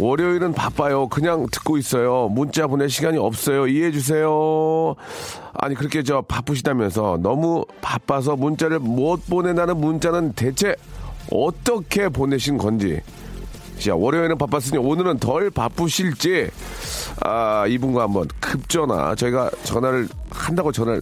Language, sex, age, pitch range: Korean, male, 40-59, 115-180 Hz